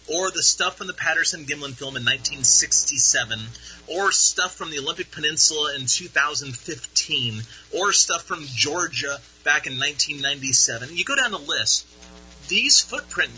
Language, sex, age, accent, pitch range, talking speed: English, male, 30-49, American, 110-150 Hz, 140 wpm